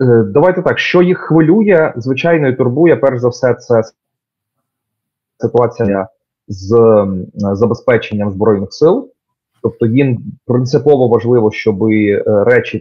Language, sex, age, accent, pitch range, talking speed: Ukrainian, male, 30-49, native, 100-125 Hz, 110 wpm